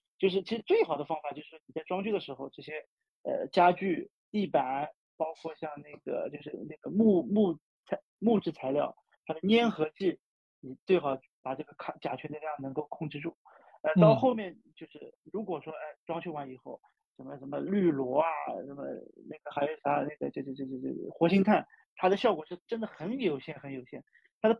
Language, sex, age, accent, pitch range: Chinese, male, 40-59, native, 150-200 Hz